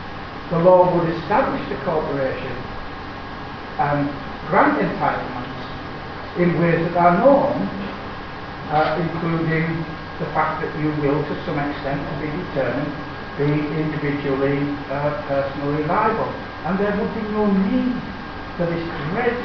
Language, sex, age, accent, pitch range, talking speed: Italian, male, 60-79, British, 140-175 Hz, 125 wpm